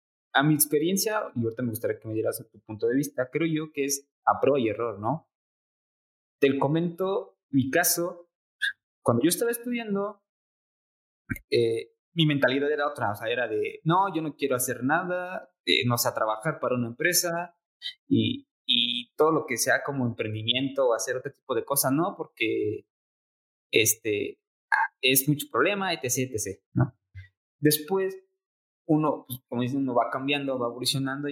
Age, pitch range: 20-39, 130-200 Hz